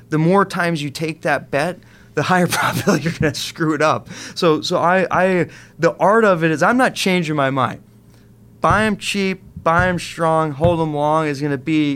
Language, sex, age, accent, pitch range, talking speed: English, male, 20-39, American, 130-160 Hz, 205 wpm